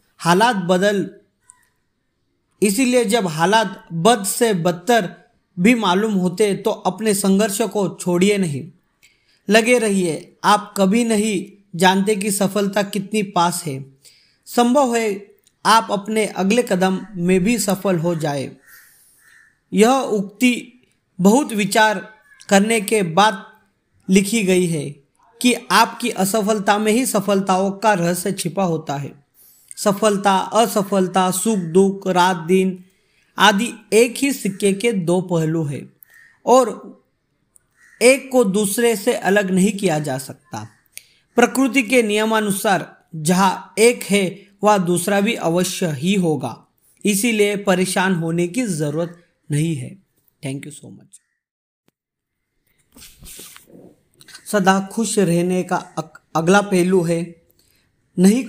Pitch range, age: 175-220 Hz, 40-59